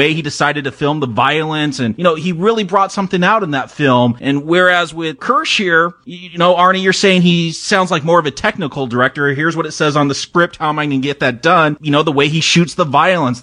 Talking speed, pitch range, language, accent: 270 wpm, 140-180 Hz, English, American